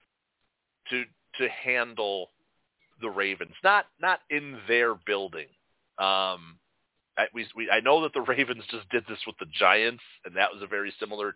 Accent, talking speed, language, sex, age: American, 160 wpm, English, male, 40-59